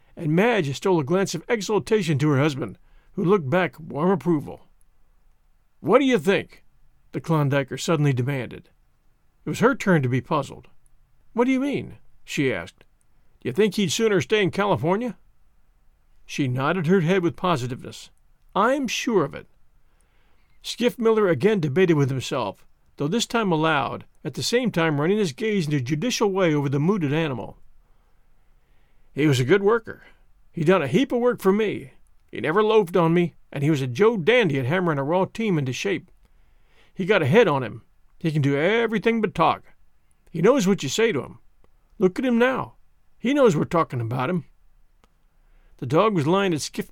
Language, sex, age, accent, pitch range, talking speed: English, male, 50-69, American, 140-205 Hz, 185 wpm